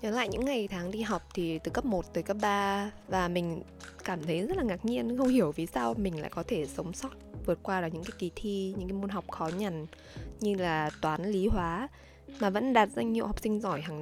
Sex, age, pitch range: female, 20-39, 170-225 Hz